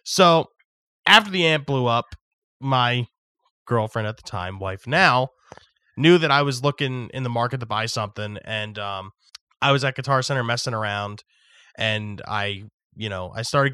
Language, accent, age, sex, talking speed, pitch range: English, American, 20-39, male, 170 wpm, 105-130 Hz